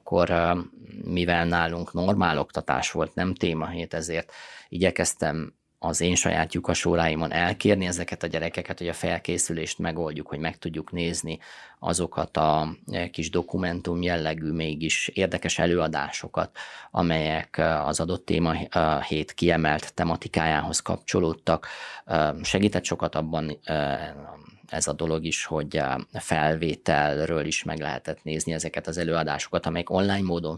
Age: 20-39